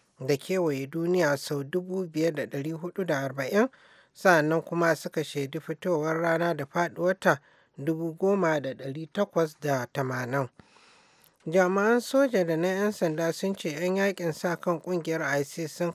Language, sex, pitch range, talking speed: English, male, 145-175 Hz, 155 wpm